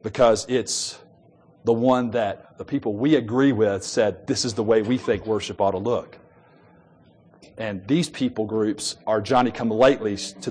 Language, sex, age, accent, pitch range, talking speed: English, male, 40-59, American, 125-185 Hz, 160 wpm